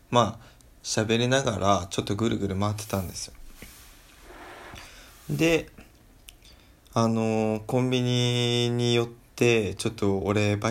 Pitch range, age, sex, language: 105-125 Hz, 20-39, male, Japanese